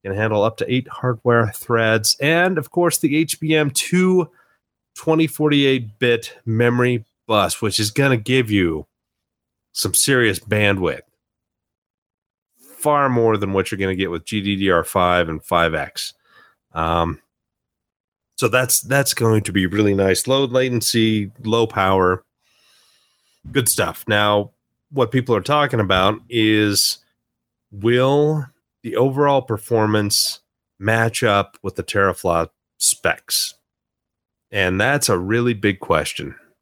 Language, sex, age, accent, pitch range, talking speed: English, male, 30-49, American, 100-125 Hz, 120 wpm